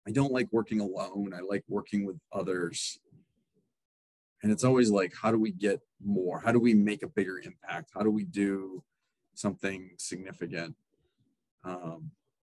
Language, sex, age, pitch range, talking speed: English, male, 30-49, 95-115 Hz, 160 wpm